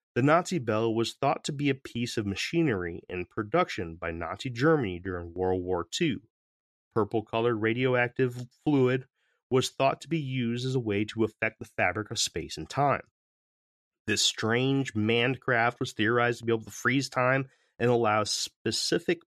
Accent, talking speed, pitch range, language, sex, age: American, 170 wpm, 100-135 Hz, English, male, 30-49